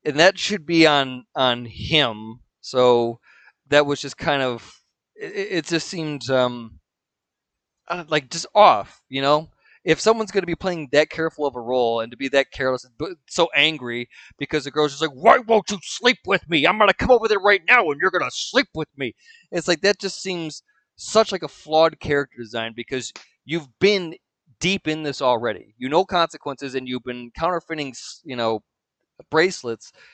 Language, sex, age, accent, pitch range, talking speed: English, male, 20-39, American, 130-170 Hz, 195 wpm